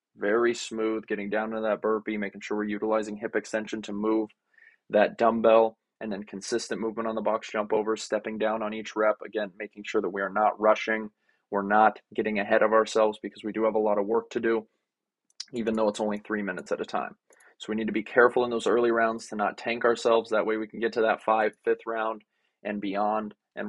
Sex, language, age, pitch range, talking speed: male, English, 20-39, 105-115 Hz, 230 wpm